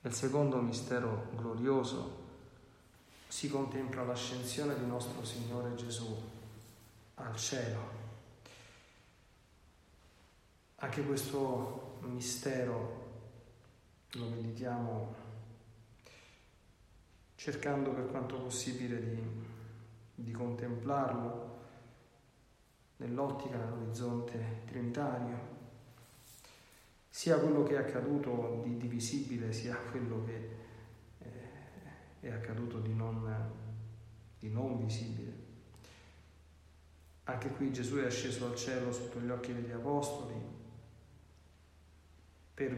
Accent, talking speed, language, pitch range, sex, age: native, 85 wpm, Italian, 110-125 Hz, male, 40-59